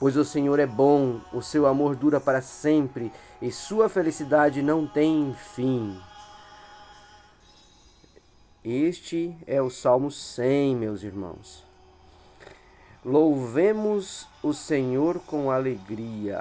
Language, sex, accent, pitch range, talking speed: Portuguese, male, Brazilian, 125-150 Hz, 105 wpm